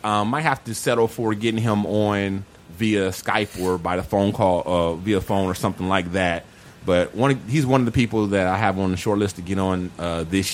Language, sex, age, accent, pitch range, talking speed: English, male, 30-49, American, 90-115 Hz, 245 wpm